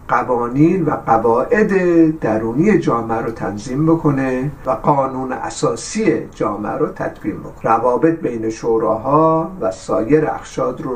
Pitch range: 120-160 Hz